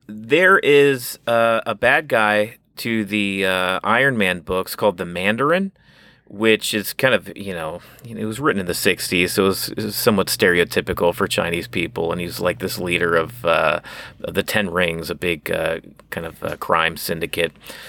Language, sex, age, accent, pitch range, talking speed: English, male, 30-49, American, 95-120 Hz, 185 wpm